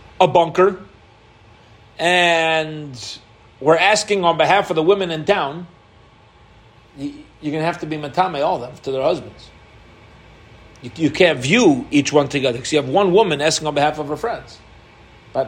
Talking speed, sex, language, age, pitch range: 175 wpm, male, English, 40-59, 145-215 Hz